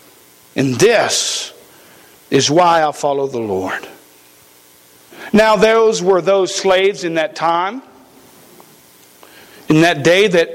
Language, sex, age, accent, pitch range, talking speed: English, male, 50-69, American, 185-245 Hz, 115 wpm